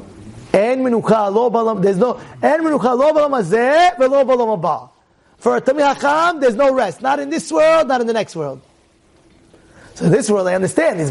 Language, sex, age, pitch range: English, male, 30-49, 195-295 Hz